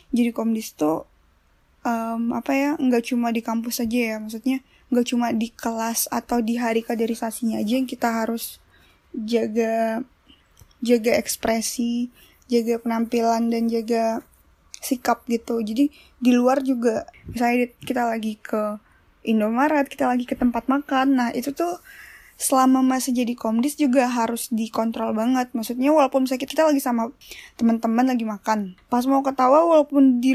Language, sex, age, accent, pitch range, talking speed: Indonesian, female, 10-29, native, 225-265 Hz, 145 wpm